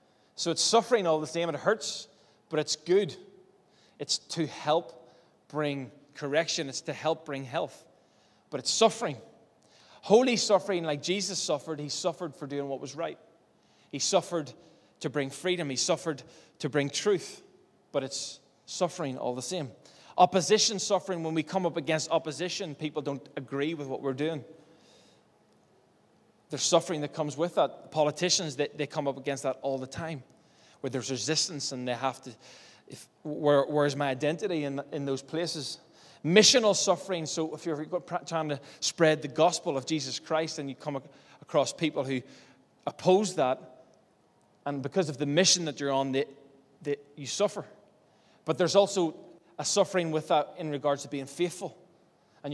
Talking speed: 165 wpm